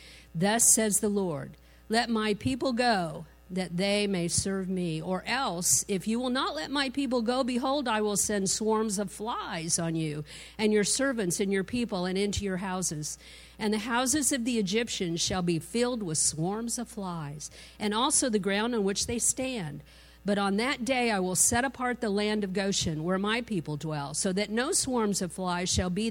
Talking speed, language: 200 wpm, English